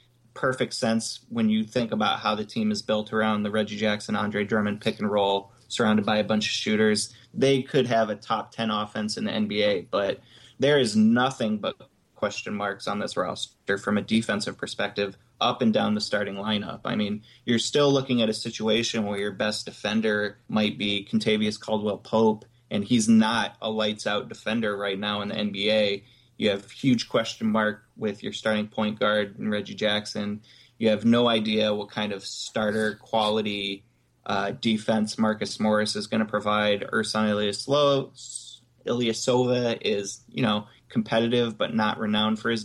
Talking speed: 175 wpm